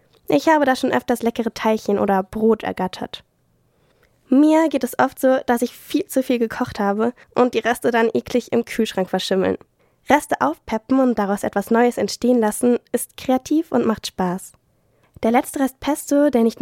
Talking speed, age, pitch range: 175 wpm, 10-29, 215-260 Hz